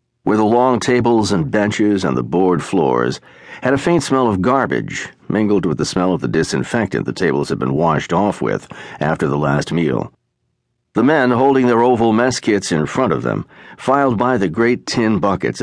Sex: male